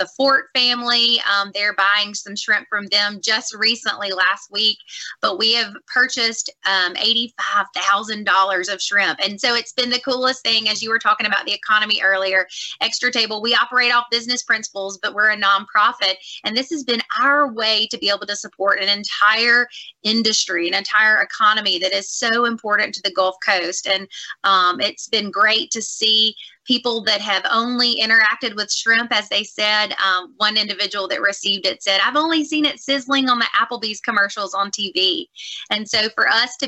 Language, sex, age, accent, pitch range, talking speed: English, female, 20-39, American, 195-235 Hz, 185 wpm